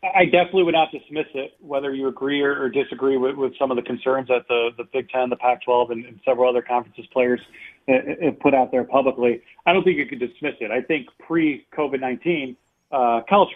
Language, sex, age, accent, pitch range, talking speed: English, male, 30-49, American, 125-140 Hz, 205 wpm